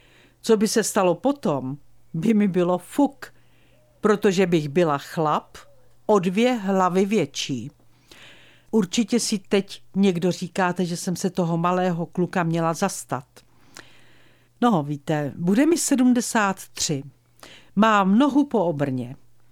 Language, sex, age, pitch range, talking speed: Czech, female, 50-69, 150-220 Hz, 120 wpm